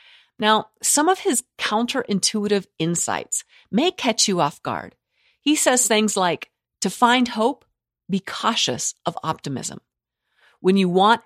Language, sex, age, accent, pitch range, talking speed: English, female, 50-69, American, 155-235 Hz, 135 wpm